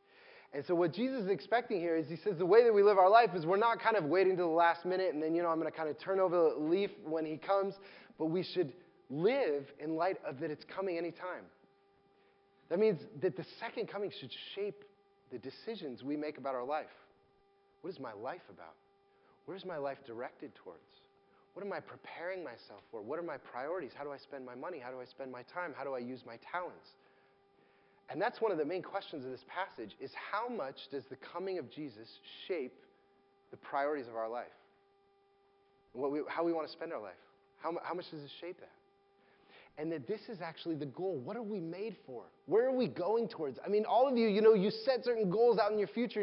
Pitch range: 160-225 Hz